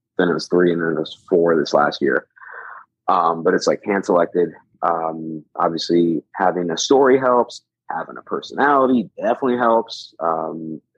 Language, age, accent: English, 30-49, American